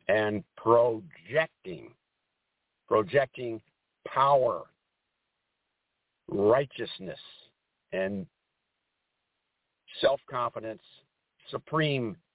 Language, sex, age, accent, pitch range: English, male, 60-79, American, 115-155 Hz